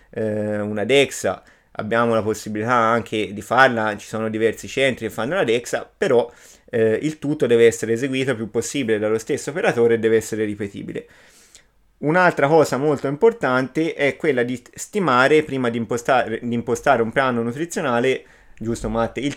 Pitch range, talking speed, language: 110-135 Hz, 160 wpm, Italian